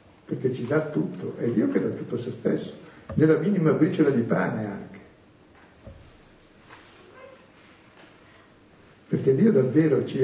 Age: 60-79